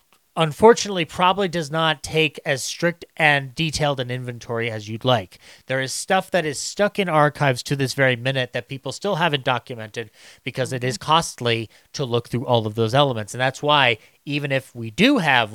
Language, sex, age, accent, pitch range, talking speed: English, male, 30-49, American, 120-165 Hz, 195 wpm